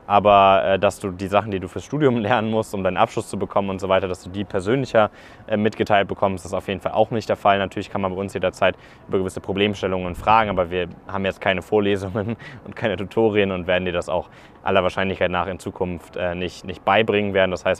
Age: 20-39